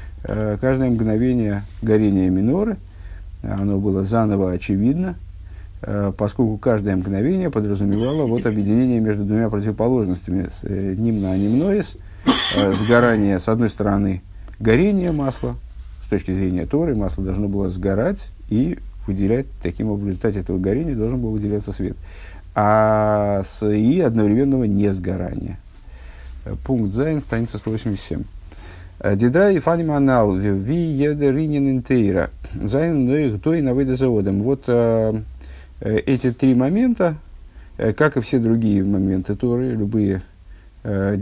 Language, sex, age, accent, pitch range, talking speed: Russian, male, 50-69, native, 95-130 Hz, 100 wpm